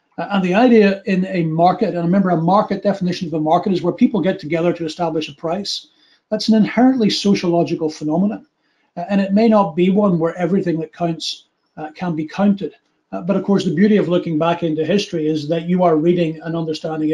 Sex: male